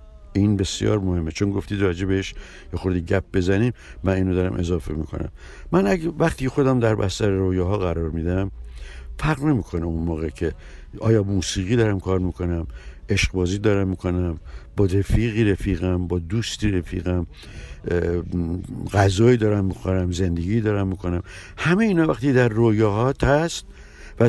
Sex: male